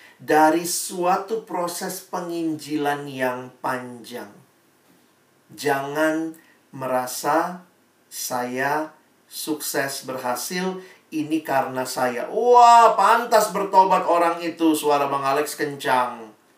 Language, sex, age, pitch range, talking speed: Indonesian, male, 50-69, 125-160 Hz, 85 wpm